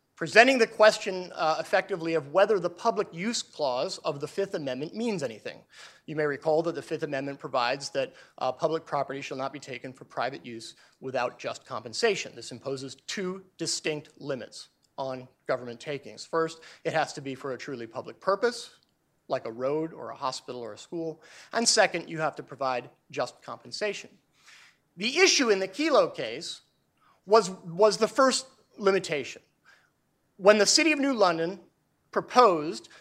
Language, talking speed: English, 165 wpm